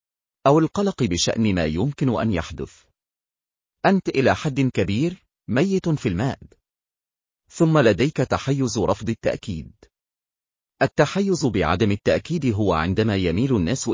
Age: 40-59